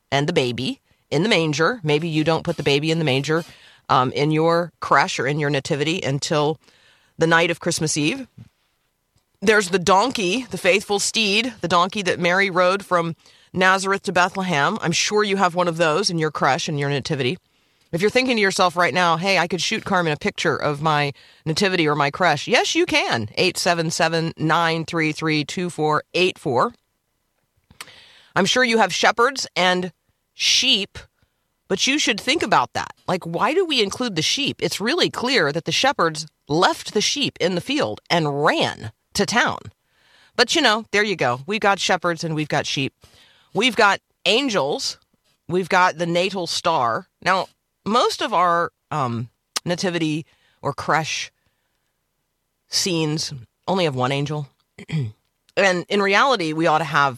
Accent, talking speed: American, 165 wpm